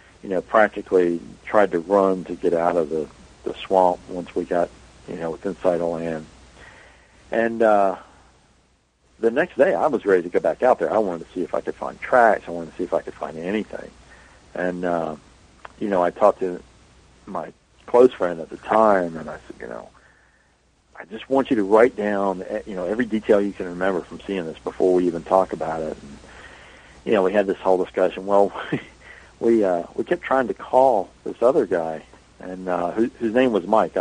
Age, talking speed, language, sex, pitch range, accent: 50-69, 210 wpm, English, male, 85-105 Hz, American